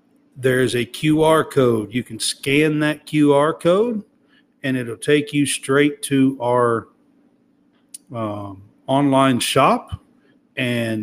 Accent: American